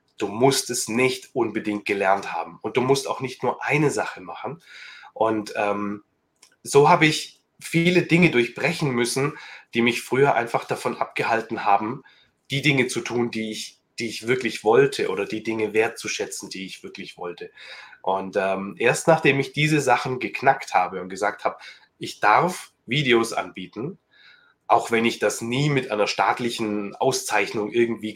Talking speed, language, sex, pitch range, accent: 160 wpm, German, male, 110-145 Hz, German